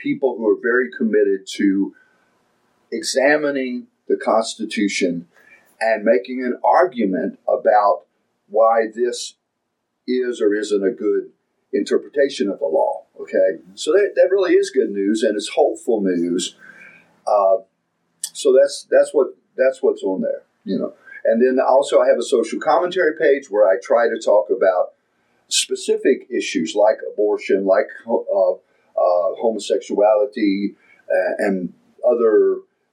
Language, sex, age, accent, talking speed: English, male, 50-69, American, 135 wpm